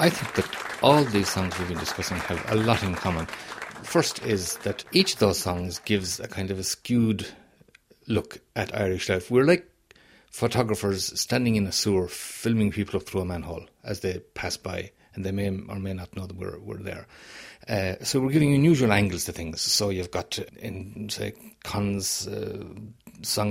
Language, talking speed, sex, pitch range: English, 195 wpm, male, 95-115 Hz